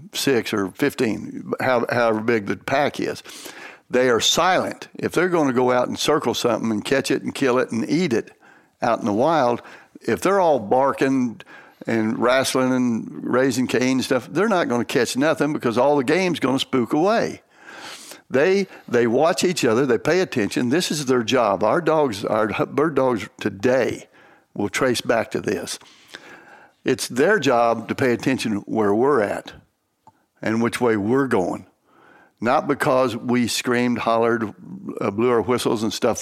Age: 60-79